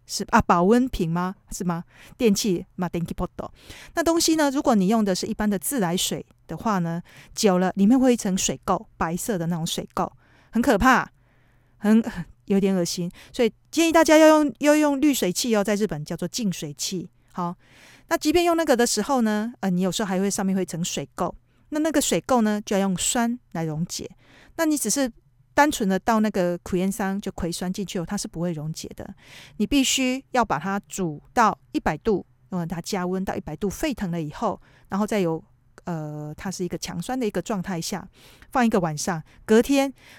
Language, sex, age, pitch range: Chinese, female, 40-59, 175-235 Hz